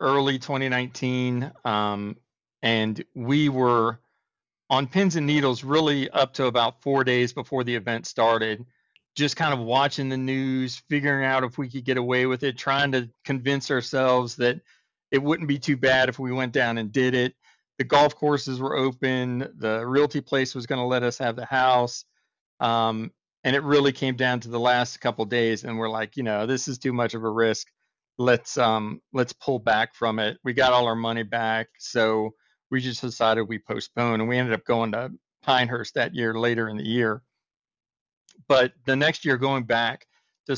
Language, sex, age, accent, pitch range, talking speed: English, male, 40-59, American, 115-140 Hz, 190 wpm